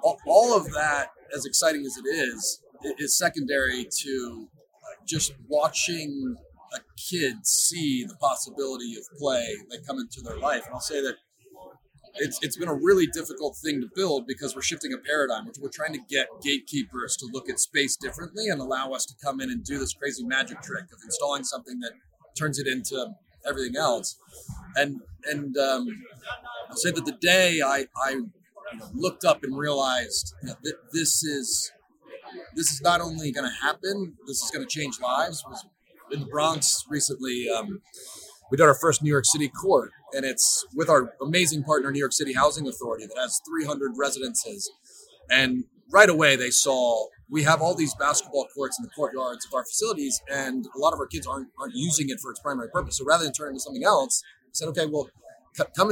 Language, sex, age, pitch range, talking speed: English, male, 30-49, 135-200 Hz, 195 wpm